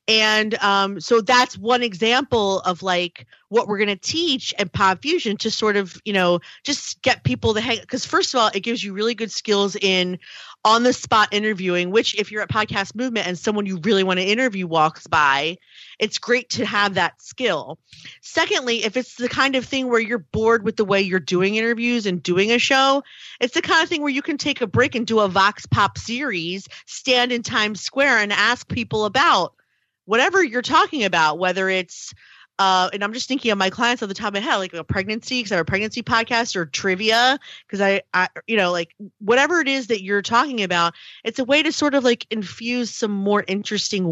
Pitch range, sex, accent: 190-245 Hz, female, American